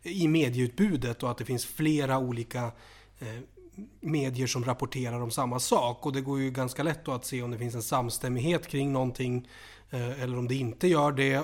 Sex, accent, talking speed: male, native, 185 wpm